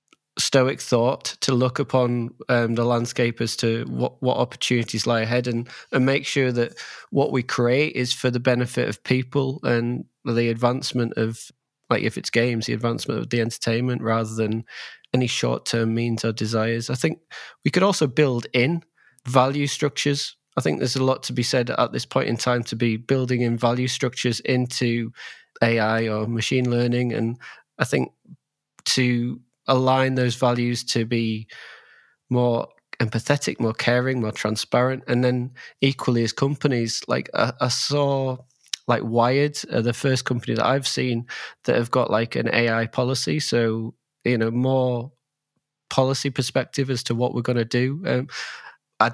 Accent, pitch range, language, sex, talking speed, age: British, 115-130 Hz, English, male, 165 wpm, 20-39